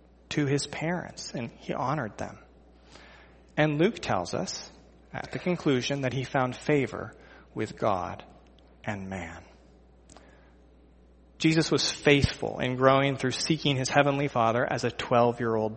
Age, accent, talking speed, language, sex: 30-49, American, 135 wpm, English, male